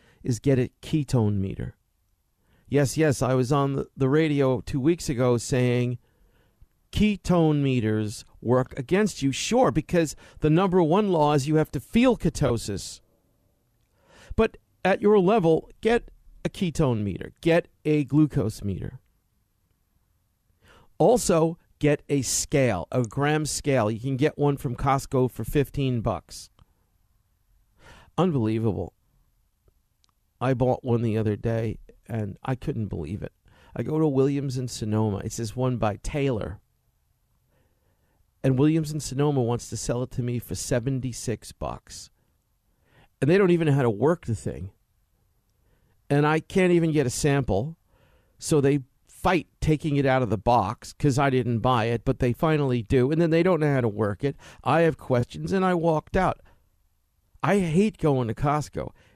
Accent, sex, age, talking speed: American, male, 40-59, 155 wpm